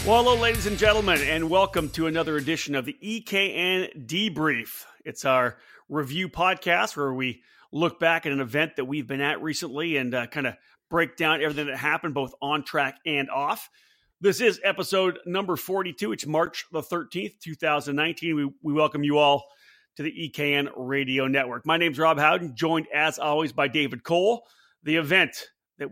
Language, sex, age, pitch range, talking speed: English, male, 40-59, 145-185 Hz, 180 wpm